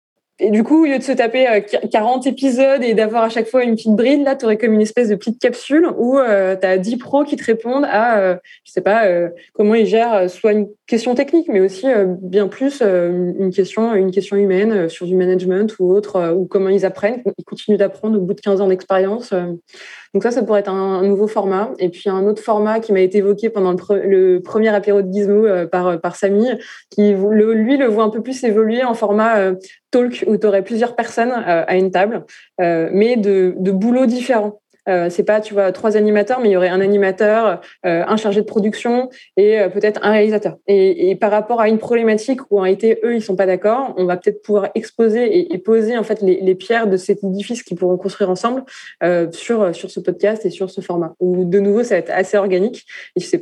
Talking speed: 225 wpm